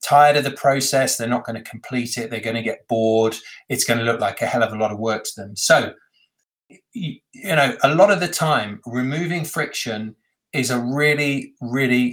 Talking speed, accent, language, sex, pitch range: 215 wpm, British, English, male, 115-145 Hz